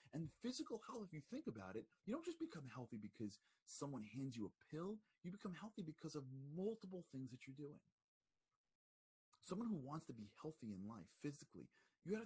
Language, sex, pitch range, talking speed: English, male, 110-175 Hz, 200 wpm